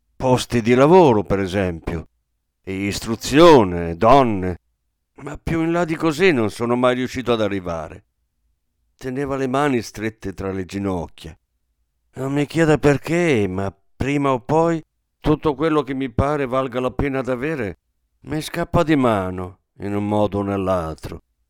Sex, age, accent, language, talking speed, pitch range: male, 50-69, native, Italian, 150 wpm, 90-145 Hz